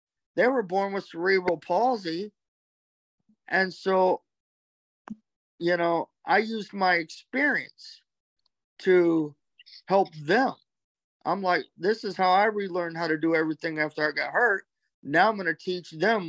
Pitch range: 165-210 Hz